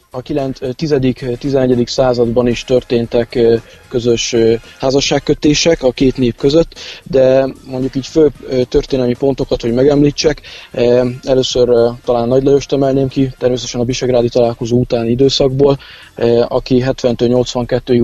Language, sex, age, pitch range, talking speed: Hungarian, male, 20-39, 120-135 Hz, 120 wpm